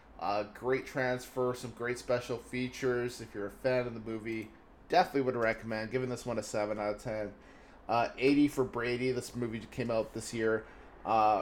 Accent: American